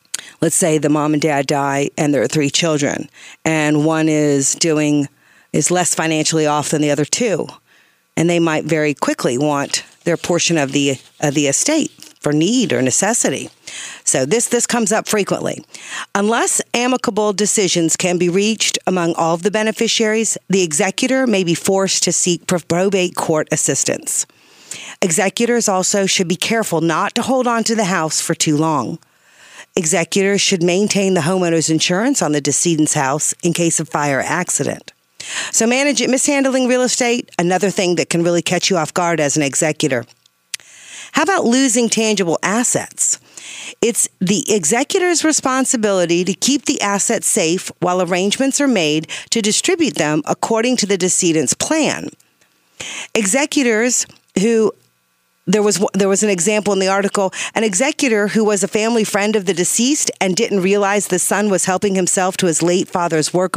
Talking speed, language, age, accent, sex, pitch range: 165 wpm, English, 50-69, American, female, 160-220 Hz